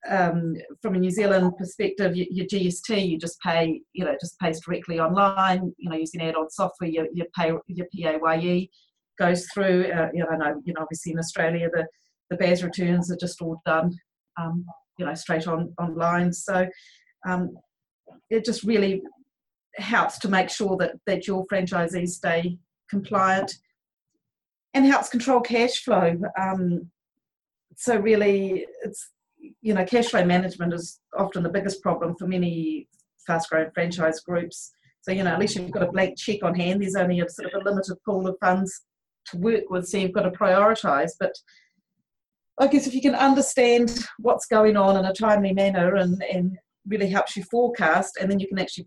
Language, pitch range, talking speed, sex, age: English, 175-200 Hz, 180 wpm, female, 40-59